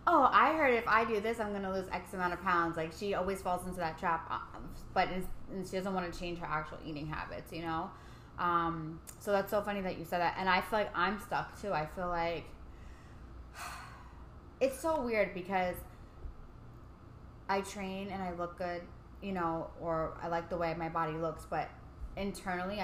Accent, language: American, English